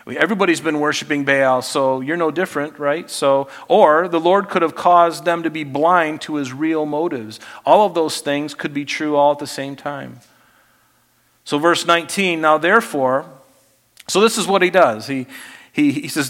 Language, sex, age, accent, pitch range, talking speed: English, male, 50-69, American, 140-180 Hz, 190 wpm